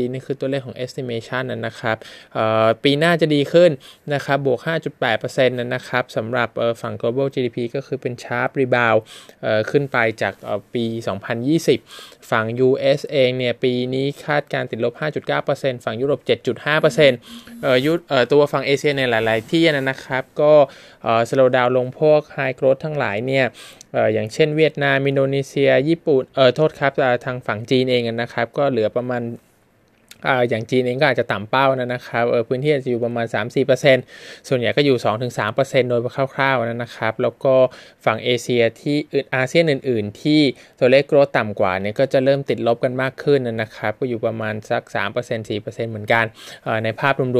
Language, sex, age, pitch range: Thai, male, 20-39, 115-140 Hz